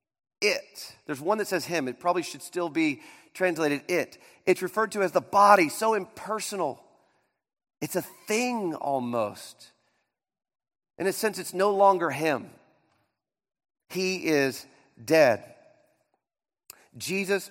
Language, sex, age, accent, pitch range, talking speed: English, male, 40-59, American, 140-215 Hz, 125 wpm